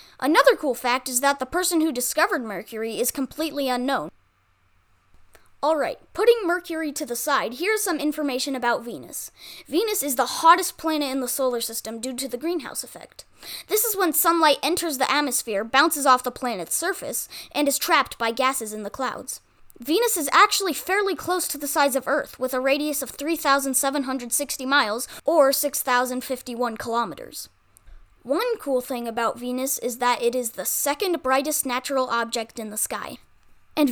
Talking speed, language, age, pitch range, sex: 170 wpm, English, 20-39, 250-325 Hz, female